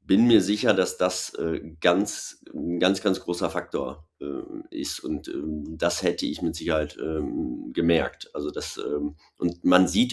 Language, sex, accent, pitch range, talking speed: German, male, German, 80-100 Hz, 170 wpm